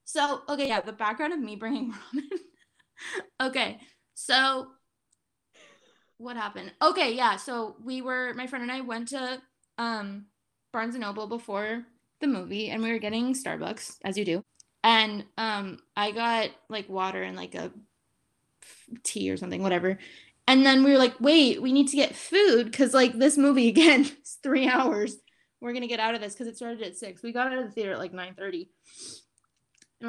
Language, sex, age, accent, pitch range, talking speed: English, female, 10-29, American, 205-265 Hz, 185 wpm